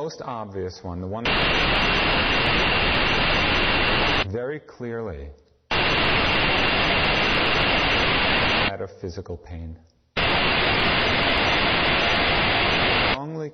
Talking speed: 60 wpm